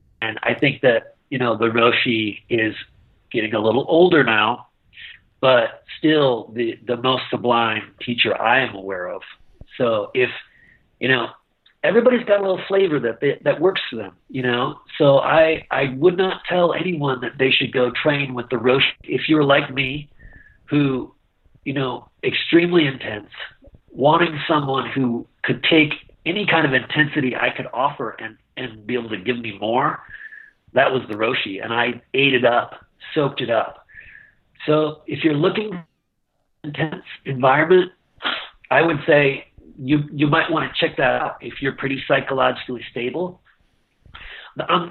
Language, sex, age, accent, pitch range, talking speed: English, male, 40-59, American, 125-170 Hz, 160 wpm